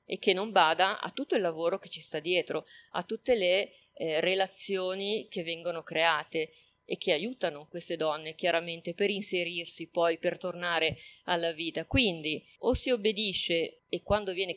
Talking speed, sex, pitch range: 165 wpm, female, 170-205 Hz